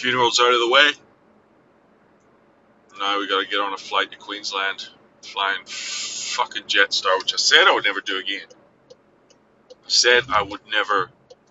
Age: 30-49